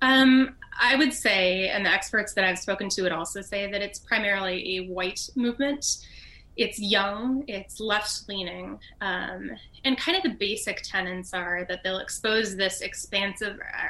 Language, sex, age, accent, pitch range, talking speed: English, female, 20-39, American, 190-230 Hz, 155 wpm